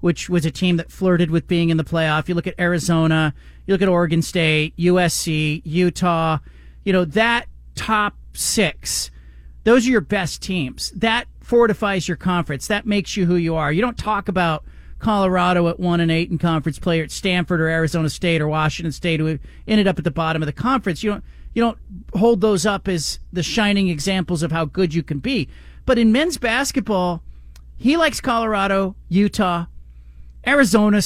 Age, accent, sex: 40-59, American, male